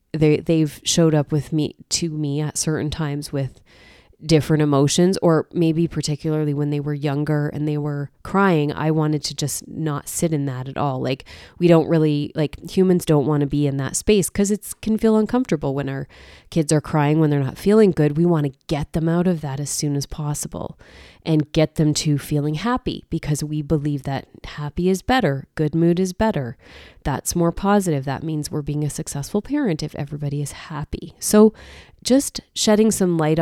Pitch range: 145-175 Hz